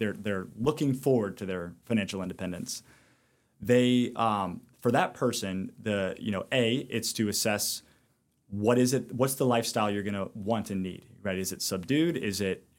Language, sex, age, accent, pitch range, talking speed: English, male, 30-49, American, 105-125 Hz, 175 wpm